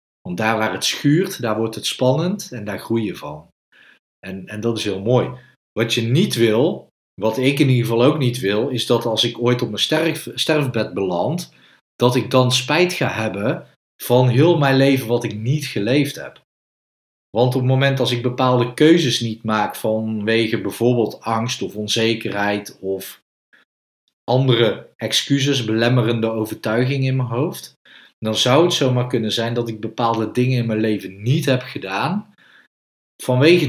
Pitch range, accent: 105-130 Hz, Dutch